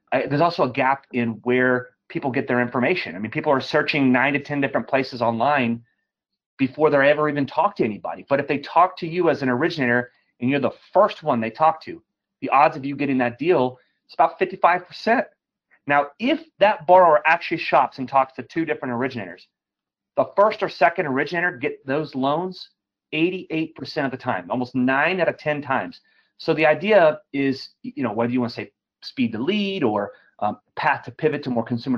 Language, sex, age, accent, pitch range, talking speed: English, male, 30-49, American, 130-165 Hz, 200 wpm